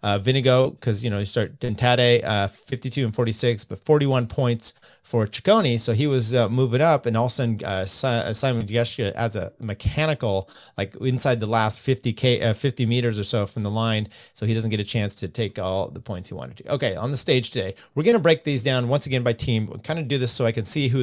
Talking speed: 240 wpm